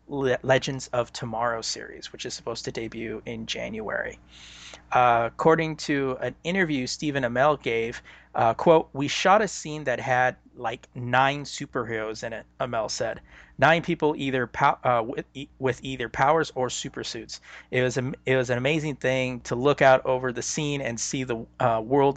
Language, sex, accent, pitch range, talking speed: English, male, American, 120-150 Hz, 175 wpm